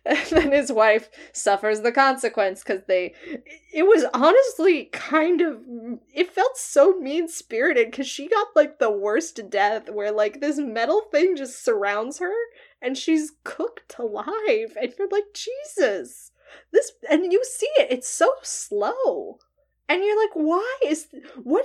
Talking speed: 155 wpm